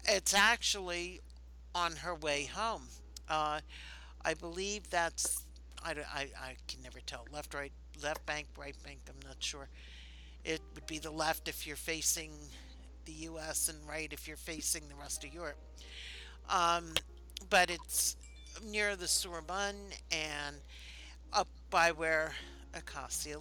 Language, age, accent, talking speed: English, 60-79, American, 140 wpm